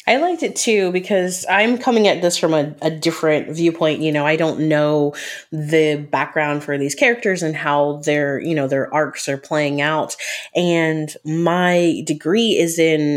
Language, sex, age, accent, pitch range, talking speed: English, female, 30-49, American, 150-170 Hz, 180 wpm